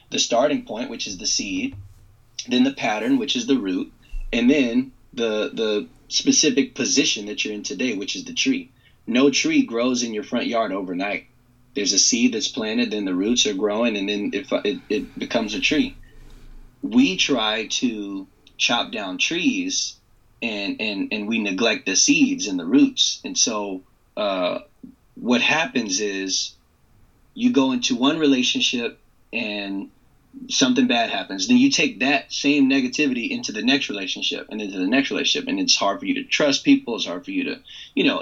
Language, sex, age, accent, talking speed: English, male, 20-39, American, 180 wpm